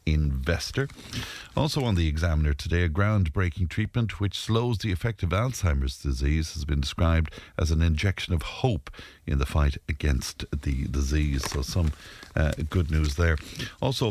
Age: 60-79